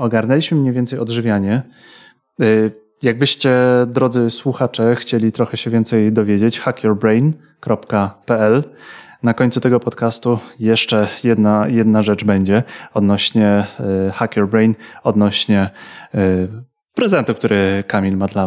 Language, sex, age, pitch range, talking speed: Polish, male, 30-49, 110-145 Hz, 105 wpm